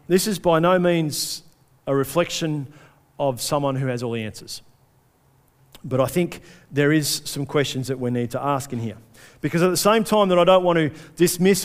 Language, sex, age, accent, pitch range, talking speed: English, male, 50-69, Australian, 130-170 Hz, 200 wpm